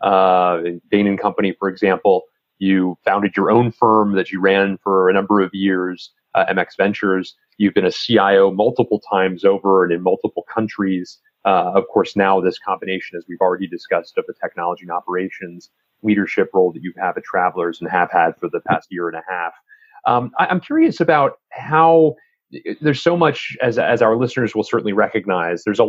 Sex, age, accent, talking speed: male, 30-49, American, 190 wpm